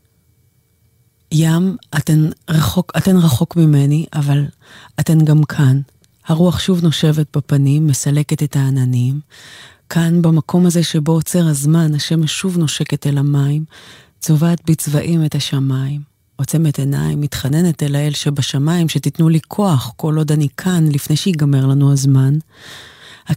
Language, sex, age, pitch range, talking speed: English, female, 30-49, 135-160 Hz, 100 wpm